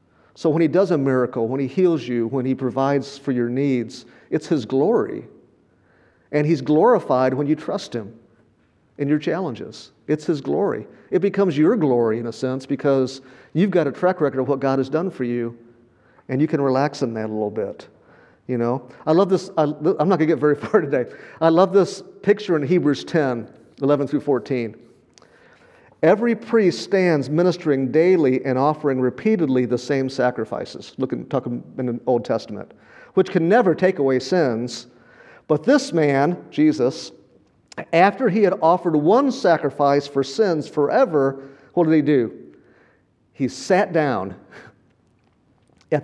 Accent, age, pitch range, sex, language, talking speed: American, 50-69, 130-170 Hz, male, English, 165 wpm